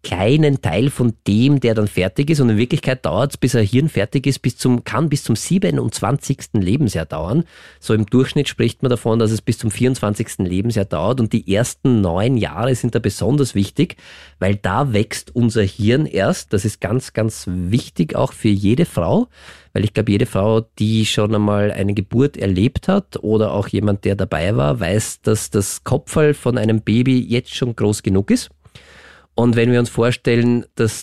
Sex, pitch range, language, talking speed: male, 105-130 Hz, German, 190 wpm